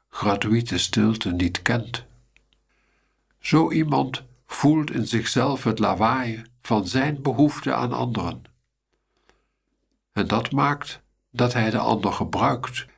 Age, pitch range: 60-79, 95-125 Hz